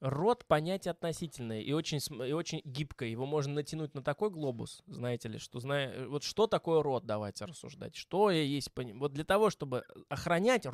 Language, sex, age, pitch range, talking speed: Russian, male, 20-39, 120-165 Hz, 180 wpm